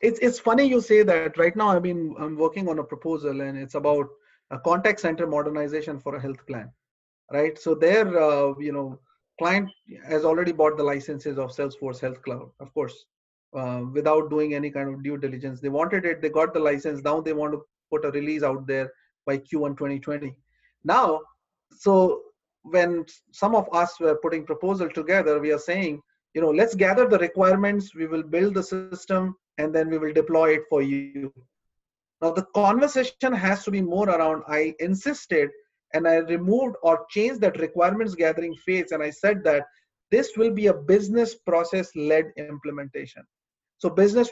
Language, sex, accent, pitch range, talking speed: English, male, Indian, 150-195 Hz, 185 wpm